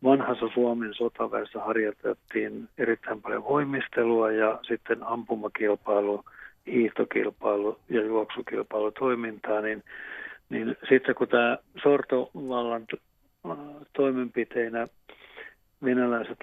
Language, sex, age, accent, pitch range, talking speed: Finnish, male, 50-69, native, 110-125 Hz, 75 wpm